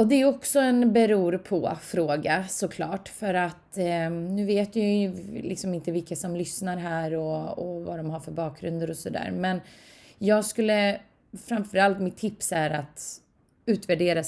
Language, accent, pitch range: Swedish, native, 155-190 Hz